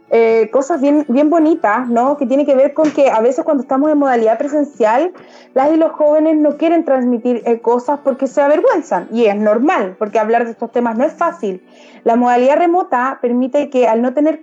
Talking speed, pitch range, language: 210 wpm, 245-305 Hz, Spanish